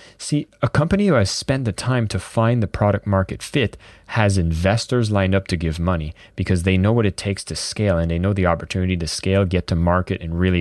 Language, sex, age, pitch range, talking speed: English, male, 30-49, 95-115 Hz, 230 wpm